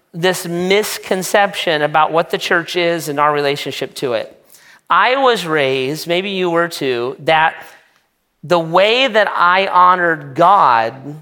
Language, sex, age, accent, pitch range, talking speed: English, male, 40-59, American, 155-190 Hz, 140 wpm